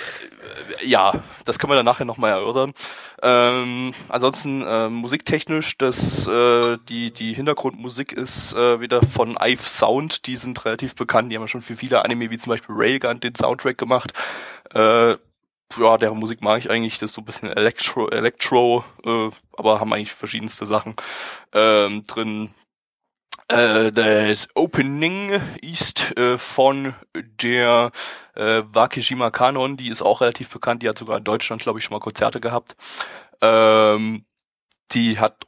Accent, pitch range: German, 110-135 Hz